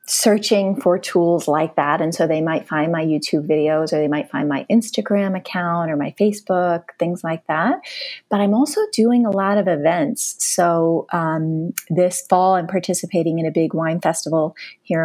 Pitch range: 165-215 Hz